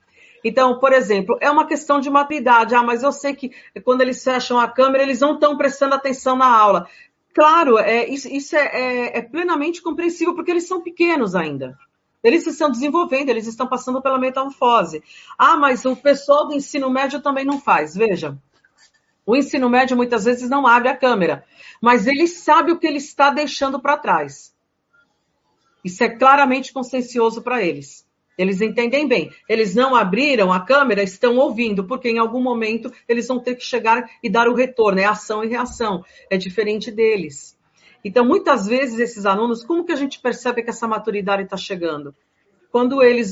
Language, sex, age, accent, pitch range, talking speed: Portuguese, female, 50-69, Brazilian, 225-275 Hz, 175 wpm